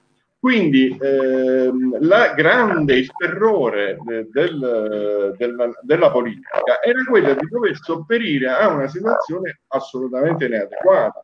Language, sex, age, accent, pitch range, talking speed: Italian, male, 50-69, native, 115-160 Hz, 110 wpm